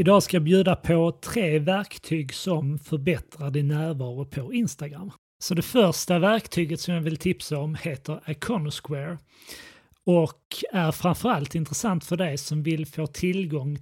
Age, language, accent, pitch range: 30-49, Swedish, native, 150-180 Hz